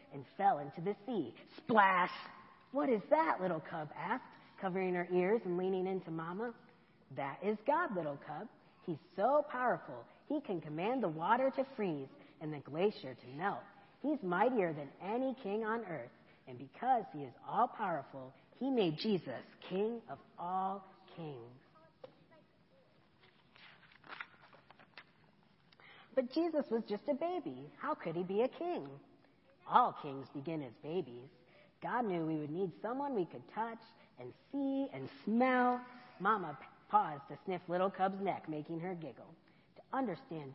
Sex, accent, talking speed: female, American, 150 wpm